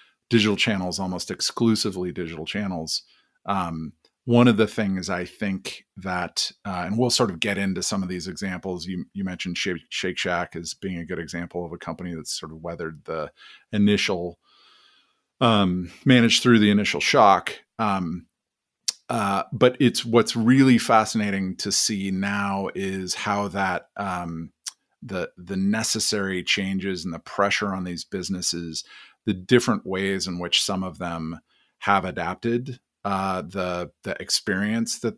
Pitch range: 90-110 Hz